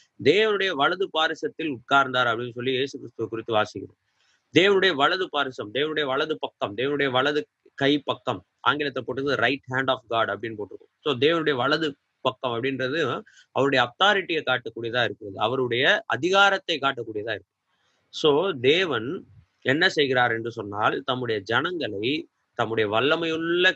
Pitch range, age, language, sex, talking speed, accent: 120-175 Hz, 30-49, Tamil, male, 130 wpm, native